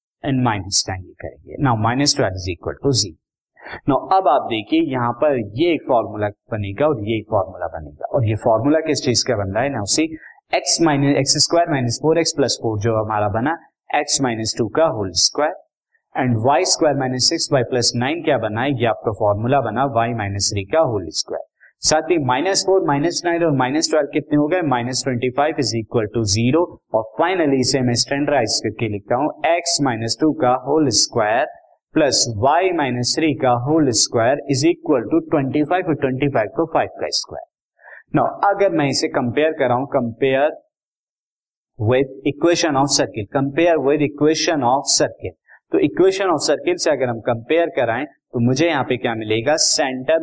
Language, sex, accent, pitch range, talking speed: Hindi, male, native, 115-155 Hz, 175 wpm